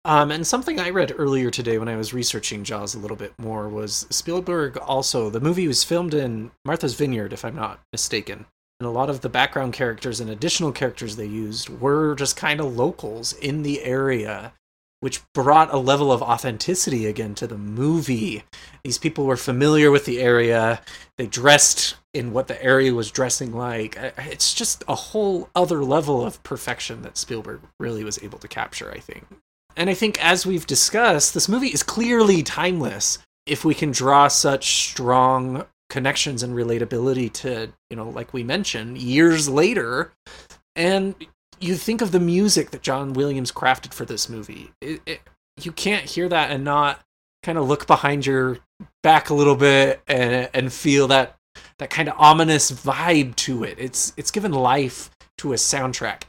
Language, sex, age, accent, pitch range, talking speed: English, male, 30-49, American, 120-160 Hz, 180 wpm